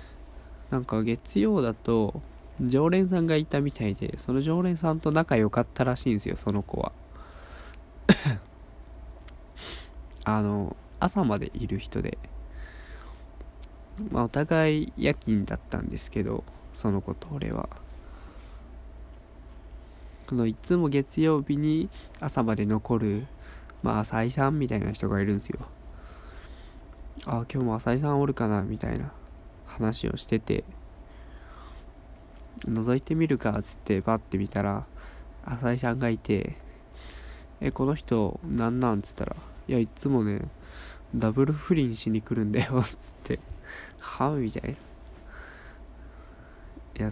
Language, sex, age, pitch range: Japanese, male, 20-39, 75-125 Hz